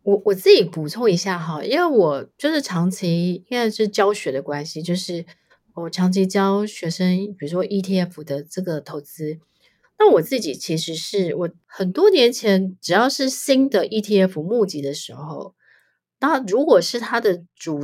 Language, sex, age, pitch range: Chinese, female, 30-49, 165-220 Hz